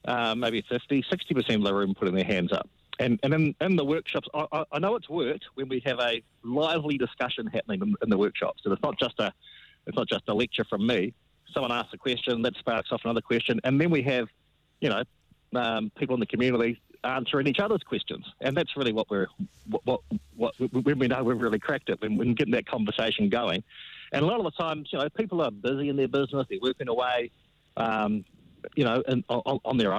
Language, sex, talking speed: English, male, 225 wpm